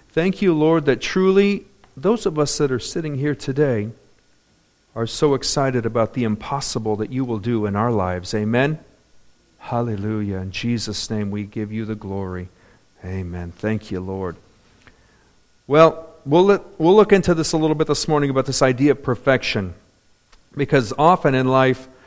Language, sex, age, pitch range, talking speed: English, male, 50-69, 115-155 Hz, 165 wpm